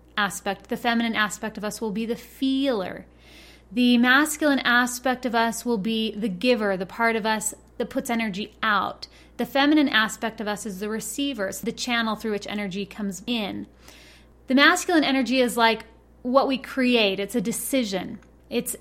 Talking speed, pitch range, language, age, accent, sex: 170 wpm, 210-260 Hz, English, 30-49, American, female